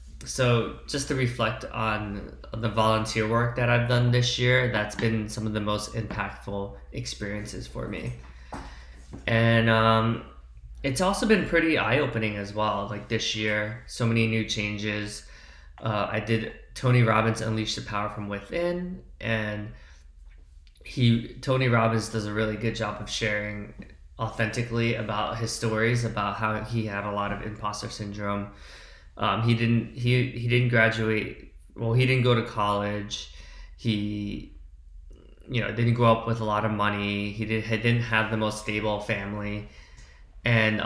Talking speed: 155 wpm